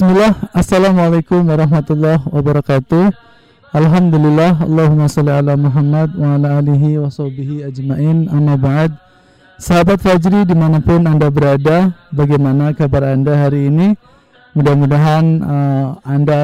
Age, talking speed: 20-39, 105 wpm